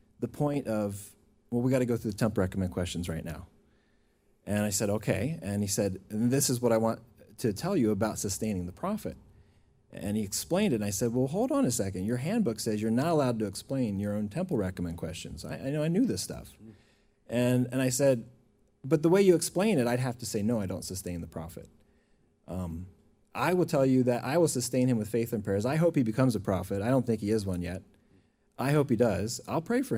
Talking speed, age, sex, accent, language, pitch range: 240 wpm, 30-49, male, American, Italian, 100-125 Hz